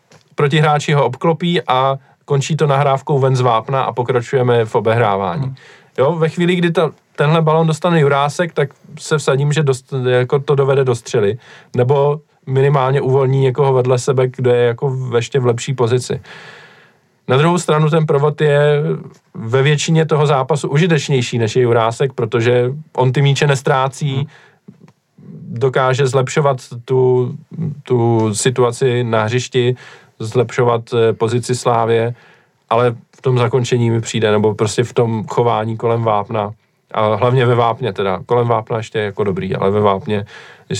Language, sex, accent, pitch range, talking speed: Czech, male, native, 115-140 Hz, 150 wpm